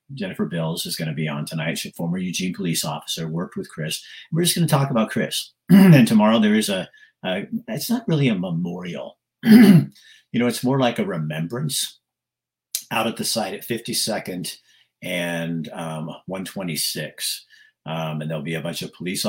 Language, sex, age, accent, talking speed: English, male, 50-69, American, 185 wpm